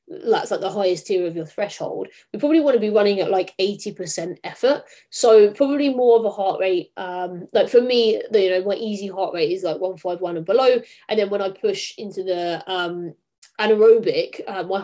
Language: English